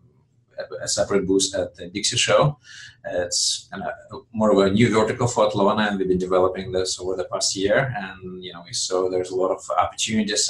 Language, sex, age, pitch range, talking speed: English, male, 20-39, 95-115 Hz, 205 wpm